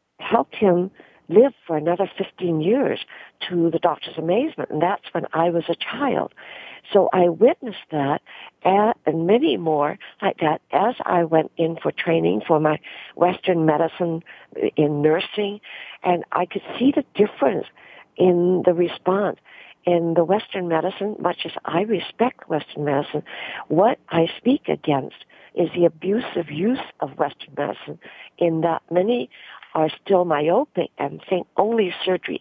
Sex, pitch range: female, 160-195 Hz